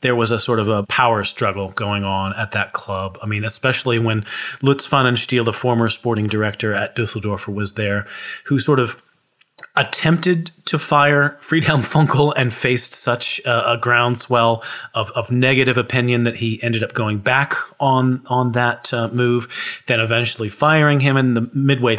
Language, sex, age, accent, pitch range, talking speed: English, male, 30-49, American, 110-140 Hz, 170 wpm